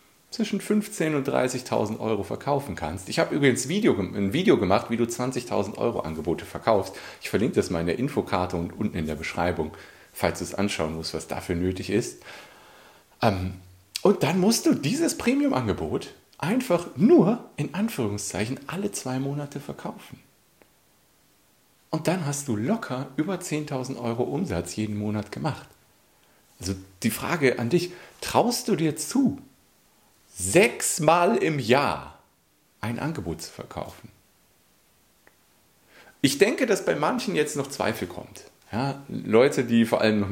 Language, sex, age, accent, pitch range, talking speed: German, male, 40-59, German, 95-140 Hz, 145 wpm